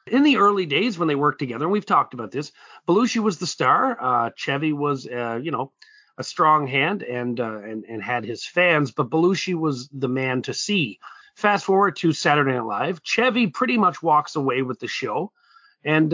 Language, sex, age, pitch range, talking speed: English, male, 30-49, 125-190 Hz, 205 wpm